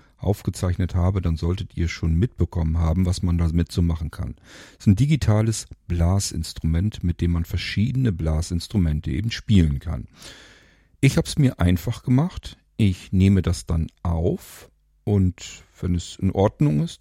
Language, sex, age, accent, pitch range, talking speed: German, male, 50-69, German, 85-110 Hz, 155 wpm